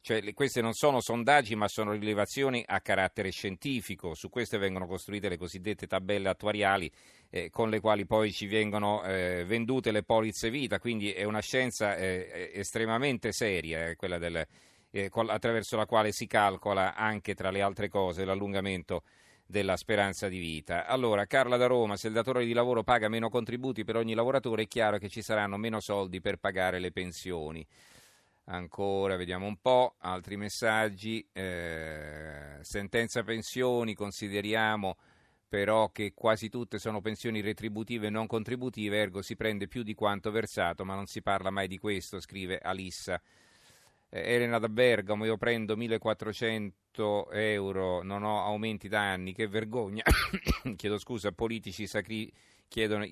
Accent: native